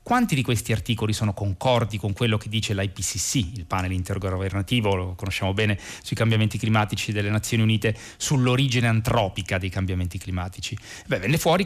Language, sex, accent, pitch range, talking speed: Italian, male, native, 100-125 Hz, 155 wpm